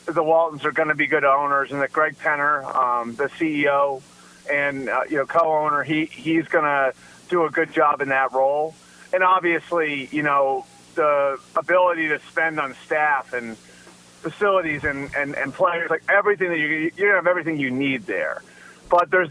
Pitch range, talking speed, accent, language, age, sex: 140-175 Hz, 185 wpm, American, English, 30-49, male